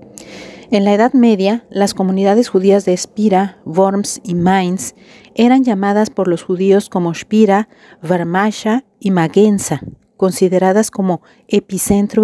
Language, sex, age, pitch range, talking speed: Spanish, female, 40-59, 175-205 Hz, 125 wpm